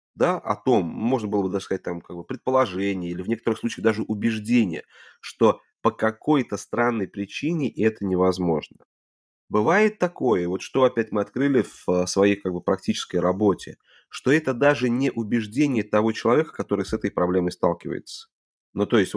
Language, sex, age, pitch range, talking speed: Russian, male, 30-49, 95-120 Hz, 165 wpm